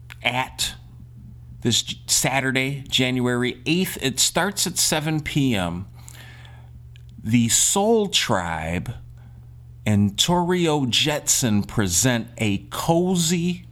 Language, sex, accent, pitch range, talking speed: English, male, American, 90-135 Hz, 85 wpm